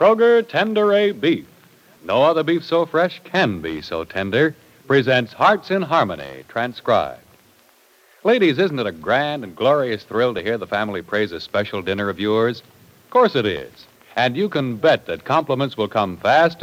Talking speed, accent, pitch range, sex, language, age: 175 wpm, American, 110-175 Hz, male, English, 60-79